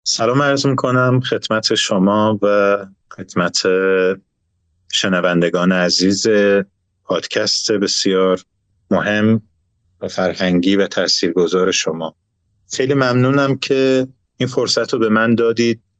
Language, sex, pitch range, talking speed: Persian, male, 95-115 Hz, 100 wpm